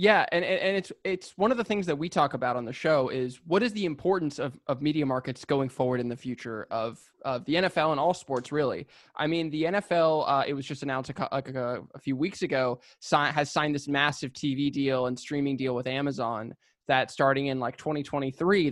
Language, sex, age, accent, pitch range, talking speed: English, male, 20-39, American, 130-160 Hz, 225 wpm